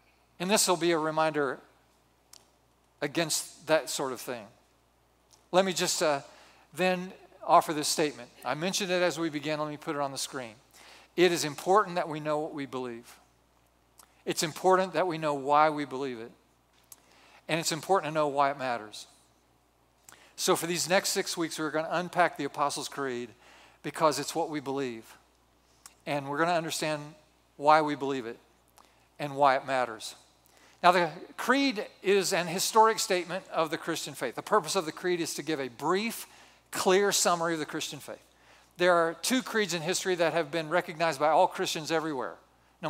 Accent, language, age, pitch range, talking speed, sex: American, English, 50-69, 140-180 Hz, 185 wpm, male